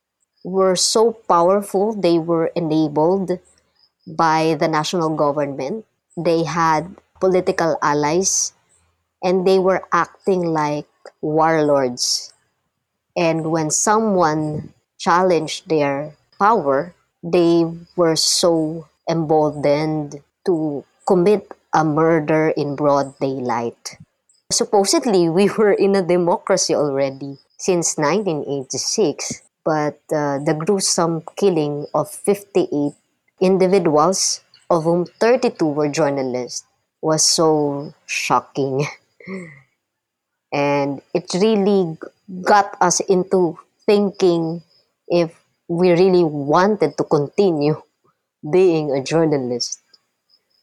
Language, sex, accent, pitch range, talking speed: English, male, Filipino, 145-185 Hz, 90 wpm